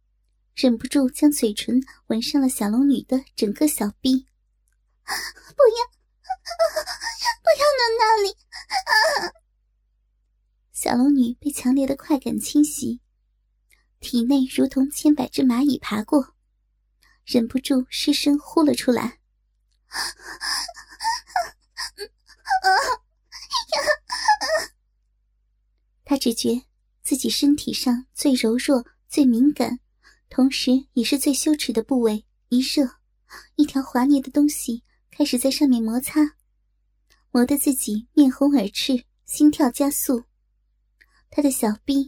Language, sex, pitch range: Chinese, male, 250-295 Hz